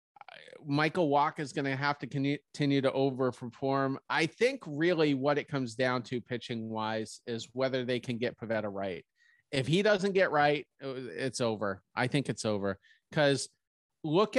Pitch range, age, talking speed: 115-145 Hz, 30-49, 170 wpm